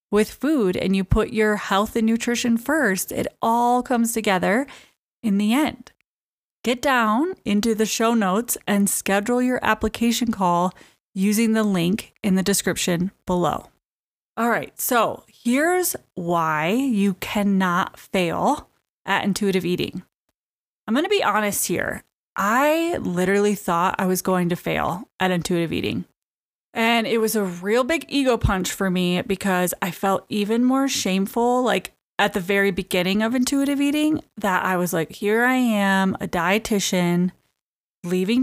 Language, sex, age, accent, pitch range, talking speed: English, female, 20-39, American, 190-245 Hz, 150 wpm